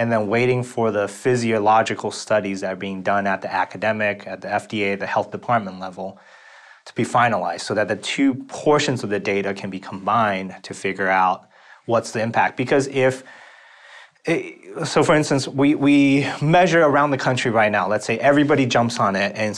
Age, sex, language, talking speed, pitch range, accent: 30-49, male, English, 185 wpm, 100-130 Hz, American